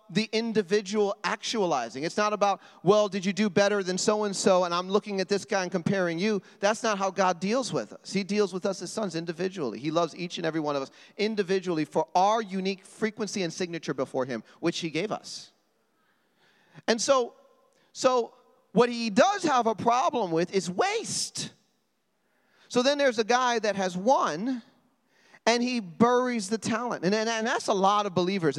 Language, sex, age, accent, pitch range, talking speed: English, male, 40-59, American, 180-230 Hz, 190 wpm